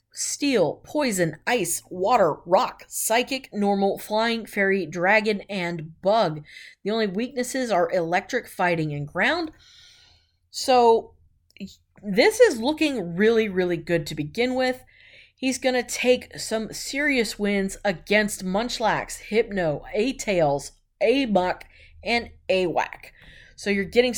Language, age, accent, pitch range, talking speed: English, 30-49, American, 175-245 Hz, 115 wpm